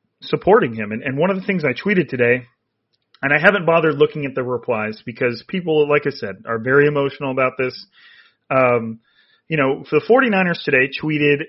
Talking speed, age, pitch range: 190 wpm, 30-49, 125-155 Hz